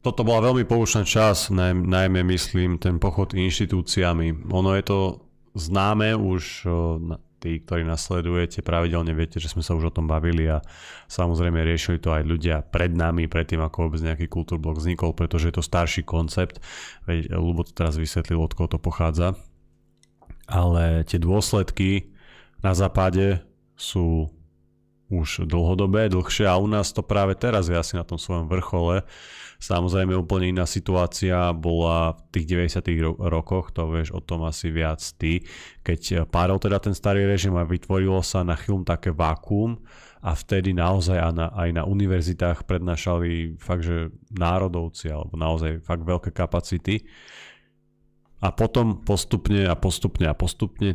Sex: male